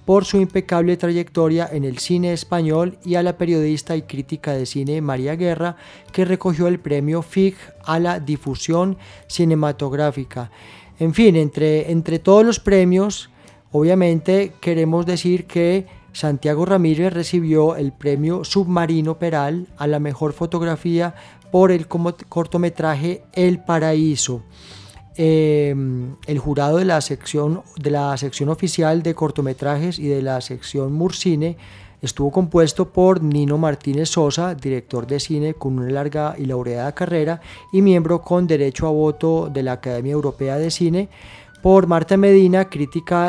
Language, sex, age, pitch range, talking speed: Spanish, male, 30-49, 145-175 Hz, 140 wpm